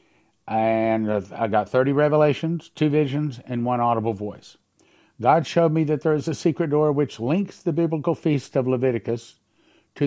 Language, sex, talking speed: English, male, 165 wpm